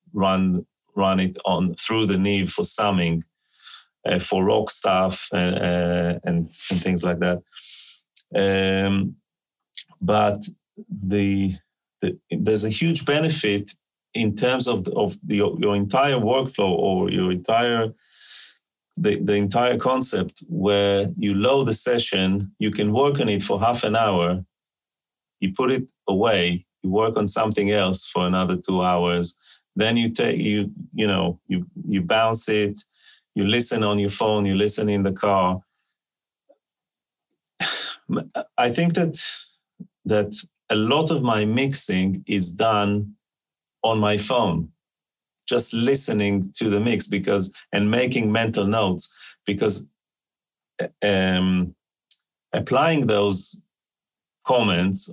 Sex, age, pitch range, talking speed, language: male, 30-49, 95-115 Hz, 130 wpm, English